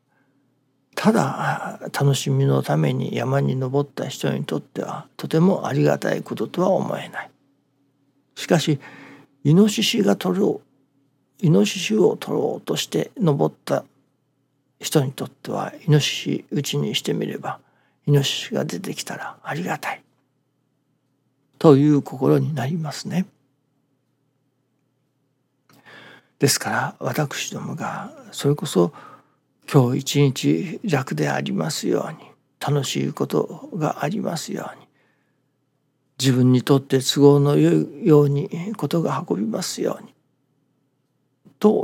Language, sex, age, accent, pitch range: Japanese, male, 60-79, native, 135-160 Hz